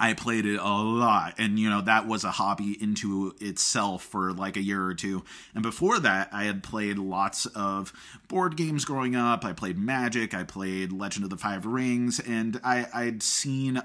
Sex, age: male, 30-49